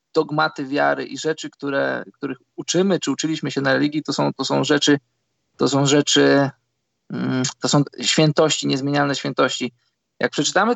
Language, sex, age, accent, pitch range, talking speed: Polish, male, 20-39, native, 135-155 Hz, 150 wpm